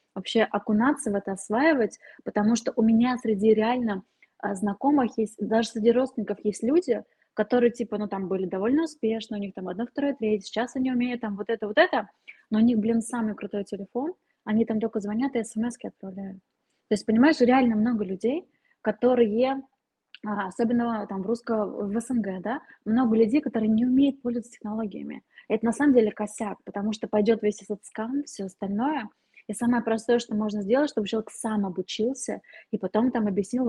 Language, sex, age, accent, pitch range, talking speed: Russian, female, 20-39, native, 210-245 Hz, 185 wpm